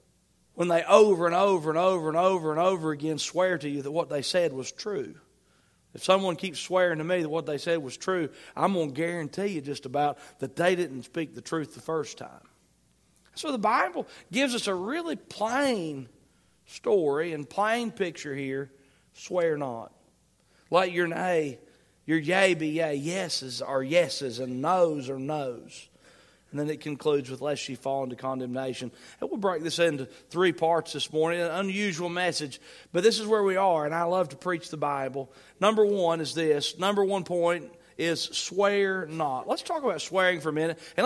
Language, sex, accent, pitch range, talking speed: English, male, American, 145-195 Hz, 190 wpm